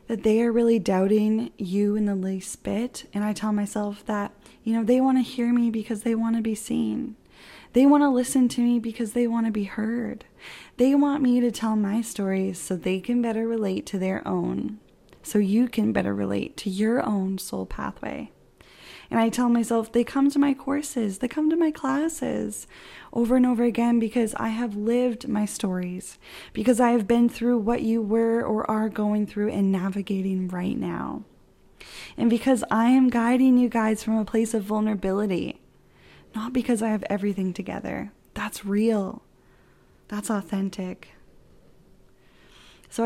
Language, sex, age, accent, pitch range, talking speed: English, female, 10-29, American, 195-235 Hz, 175 wpm